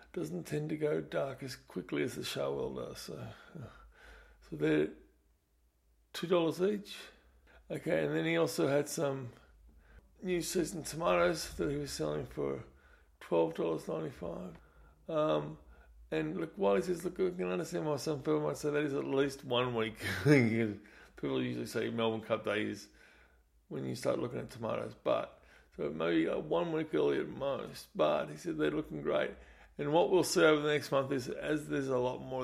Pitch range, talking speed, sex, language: 115-155 Hz, 180 wpm, male, English